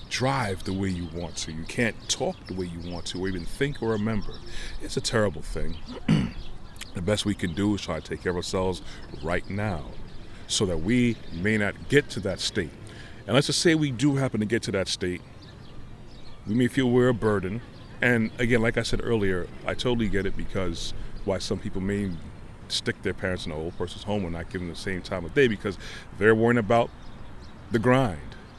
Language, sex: English, male